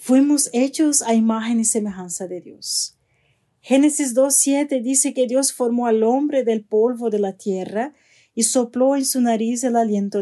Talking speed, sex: 165 wpm, female